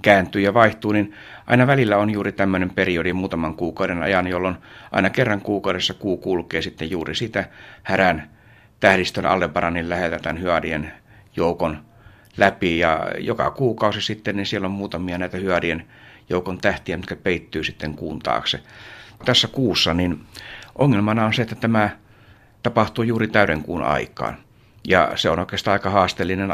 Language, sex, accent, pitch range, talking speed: Finnish, male, native, 90-105 Hz, 145 wpm